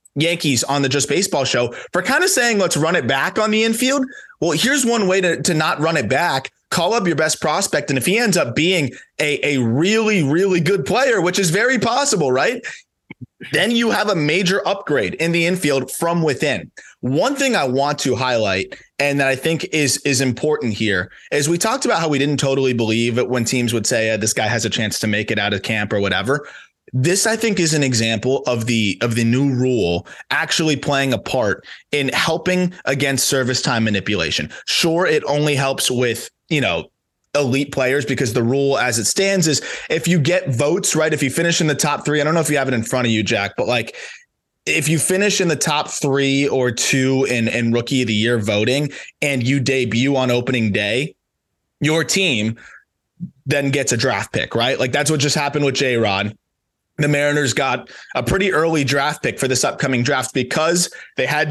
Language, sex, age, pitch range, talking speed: English, male, 20-39, 125-165 Hz, 210 wpm